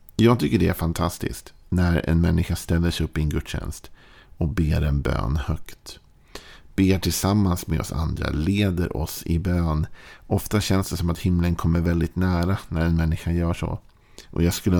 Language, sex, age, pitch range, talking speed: Swedish, male, 50-69, 80-90 Hz, 185 wpm